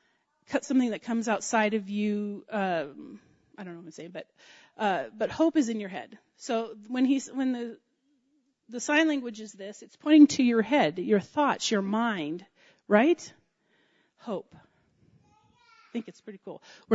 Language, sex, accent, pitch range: English, female, American, 205-270 Hz